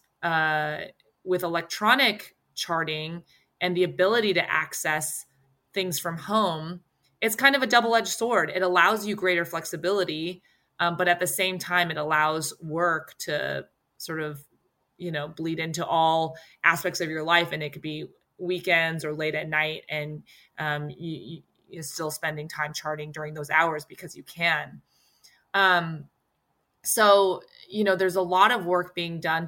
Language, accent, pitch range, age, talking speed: English, American, 155-180 Hz, 20-39, 160 wpm